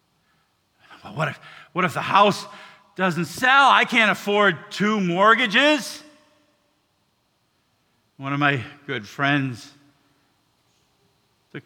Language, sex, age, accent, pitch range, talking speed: English, male, 50-69, American, 120-180 Hz, 100 wpm